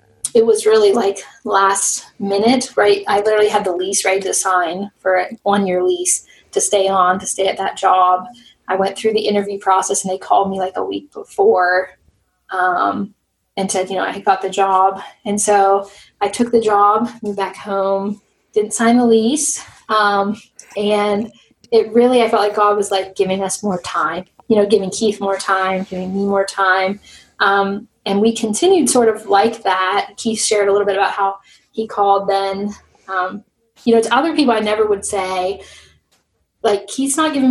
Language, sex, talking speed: English, female, 190 wpm